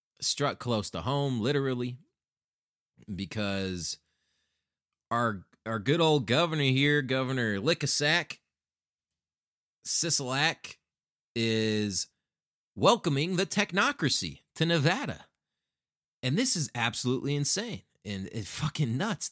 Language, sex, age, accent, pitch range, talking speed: English, male, 30-49, American, 105-145 Hz, 95 wpm